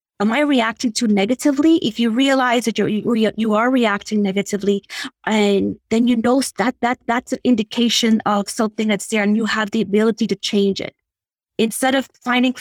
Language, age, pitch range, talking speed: English, 30-49, 200-235 Hz, 180 wpm